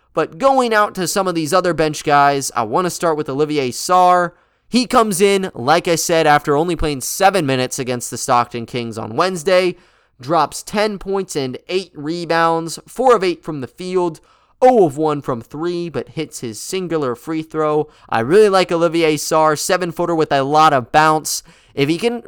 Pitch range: 140-180 Hz